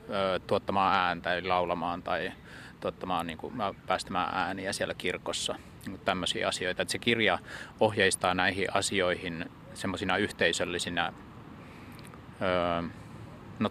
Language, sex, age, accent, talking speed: Finnish, male, 30-49, native, 95 wpm